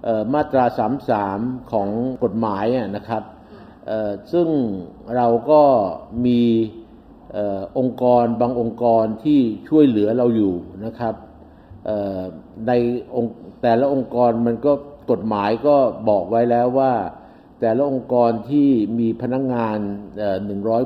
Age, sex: 60-79, male